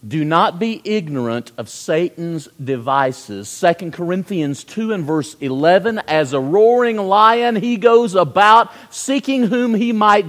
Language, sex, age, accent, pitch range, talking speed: English, male, 50-69, American, 145-220 Hz, 140 wpm